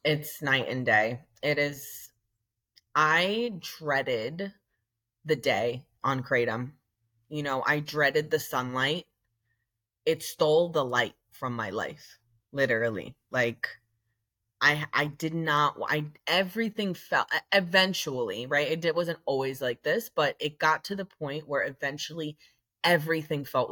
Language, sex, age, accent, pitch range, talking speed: English, female, 20-39, American, 120-155 Hz, 130 wpm